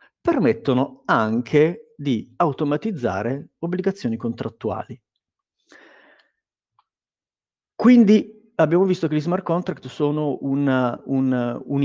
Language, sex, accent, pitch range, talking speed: Italian, male, native, 115-155 Hz, 85 wpm